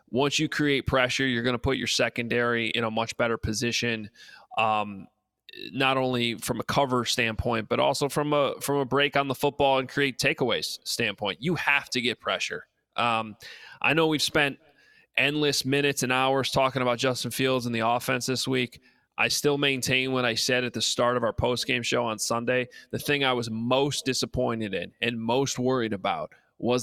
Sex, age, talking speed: male, 20-39, 190 wpm